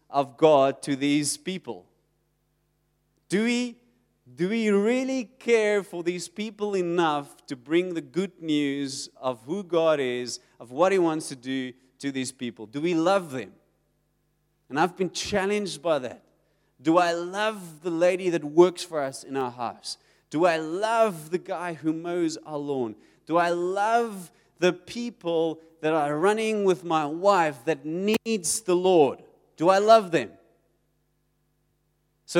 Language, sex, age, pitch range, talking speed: English, male, 30-49, 155-200 Hz, 155 wpm